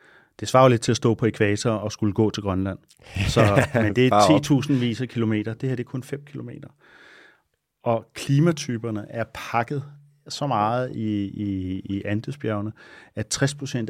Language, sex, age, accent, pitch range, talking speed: Danish, male, 30-49, native, 105-135 Hz, 165 wpm